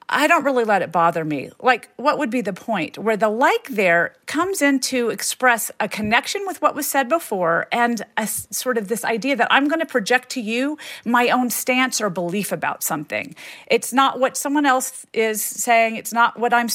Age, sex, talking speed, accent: 40-59, female, 210 wpm, American